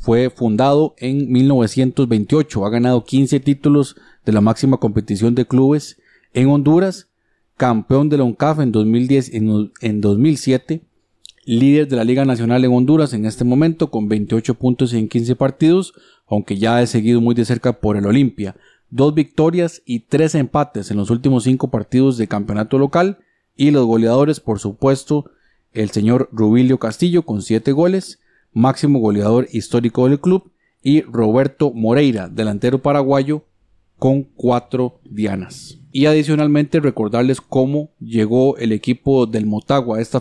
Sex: male